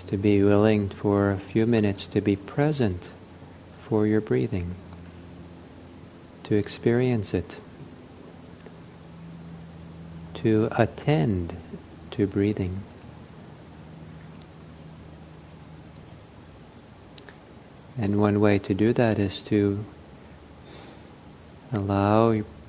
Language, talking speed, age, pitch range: English, 75 wpm, 50-69, 85-110 Hz